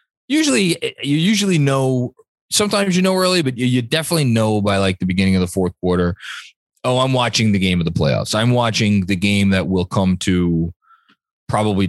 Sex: male